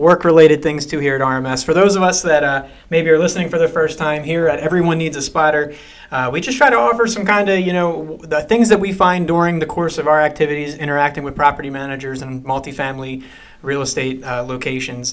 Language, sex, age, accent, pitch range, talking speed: English, male, 30-49, American, 130-165 Hz, 225 wpm